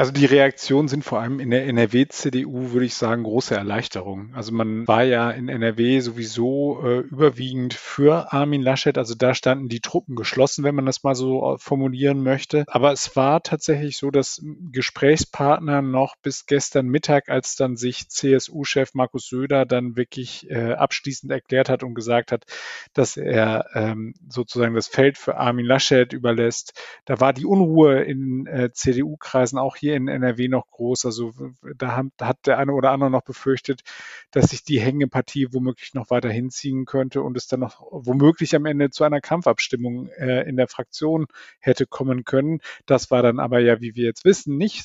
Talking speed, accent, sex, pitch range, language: 175 wpm, German, male, 125-140 Hz, German